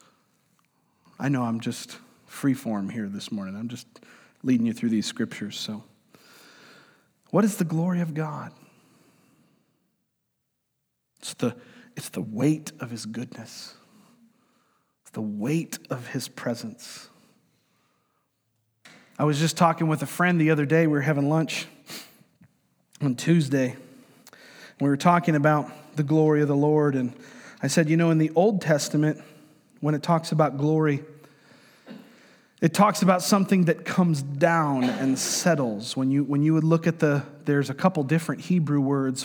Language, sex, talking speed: English, male, 150 wpm